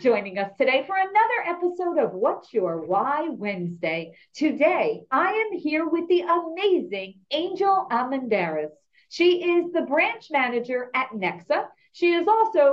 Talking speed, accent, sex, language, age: 140 wpm, American, female, English, 40-59